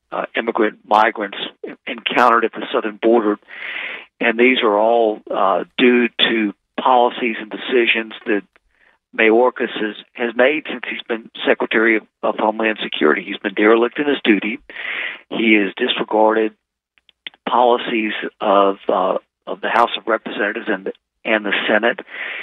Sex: male